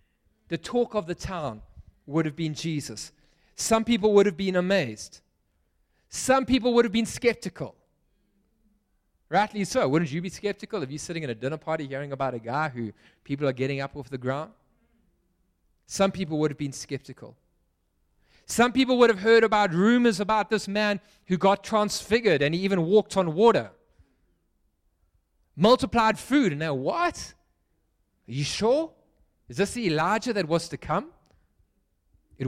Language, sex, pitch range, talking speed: English, male, 125-210 Hz, 165 wpm